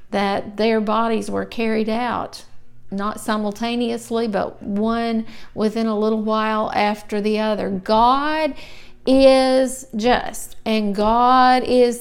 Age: 50-69